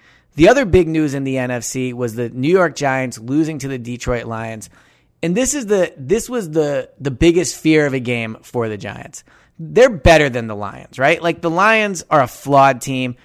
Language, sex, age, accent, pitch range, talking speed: English, male, 30-49, American, 125-170 Hz, 210 wpm